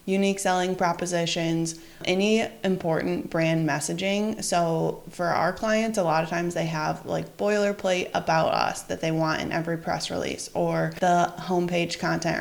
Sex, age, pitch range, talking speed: female, 20-39, 160-185 Hz, 155 wpm